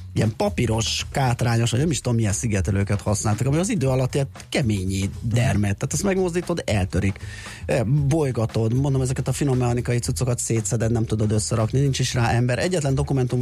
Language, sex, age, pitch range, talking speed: Hungarian, male, 30-49, 105-125 Hz, 170 wpm